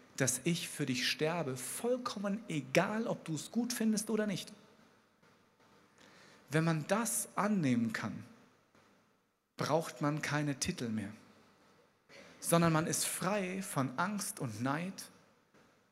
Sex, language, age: male, German, 40-59